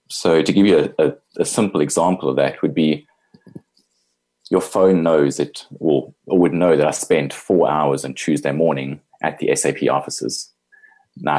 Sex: male